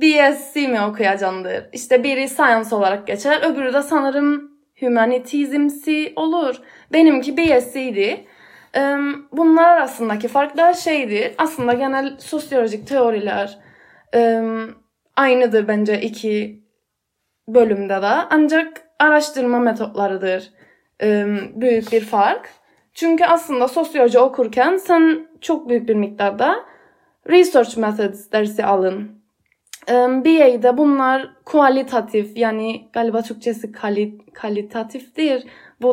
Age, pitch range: 20-39, 220-280 Hz